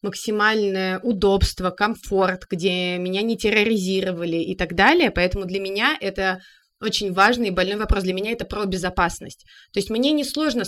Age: 20-39